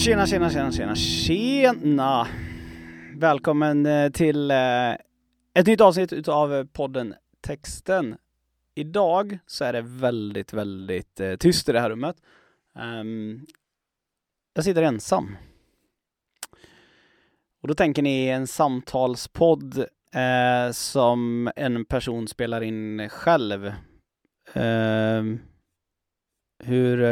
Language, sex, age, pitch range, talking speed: Swedish, male, 20-39, 110-150 Hz, 90 wpm